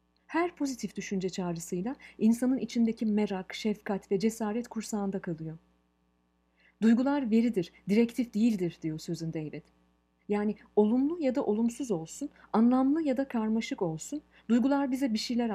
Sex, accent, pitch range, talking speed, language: female, native, 170-240 Hz, 130 wpm, Turkish